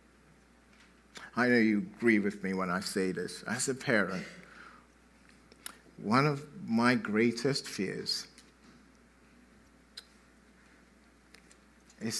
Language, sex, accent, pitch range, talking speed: English, male, British, 95-125 Hz, 95 wpm